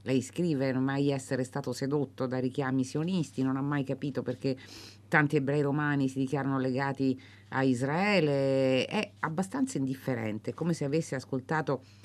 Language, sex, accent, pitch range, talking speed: Italian, female, native, 120-150 Hz, 150 wpm